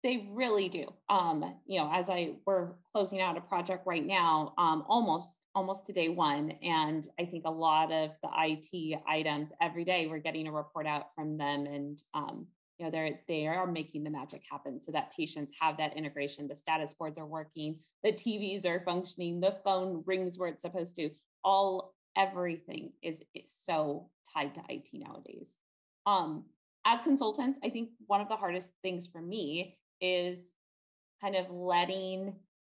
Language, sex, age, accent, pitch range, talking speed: English, female, 20-39, American, 155-190 Hz, 180 wpm